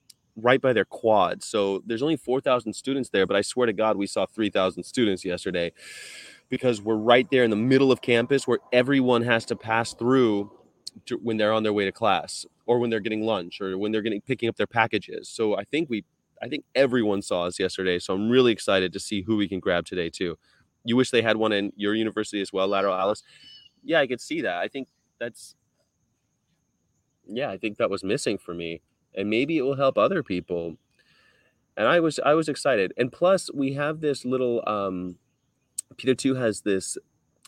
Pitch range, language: 100-125 Hz, English